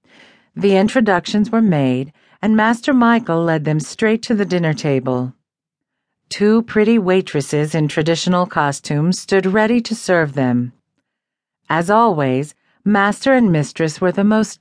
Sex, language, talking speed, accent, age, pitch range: female, English, 135 wpm, American, 50-69, 145-200 Hz